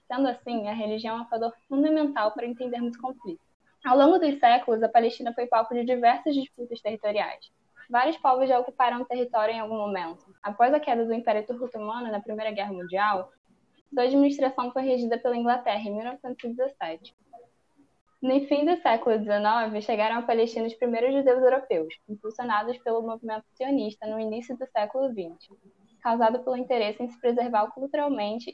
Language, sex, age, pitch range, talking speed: Portuguese, female, 10-29, 215-255 Hz, 170 wpm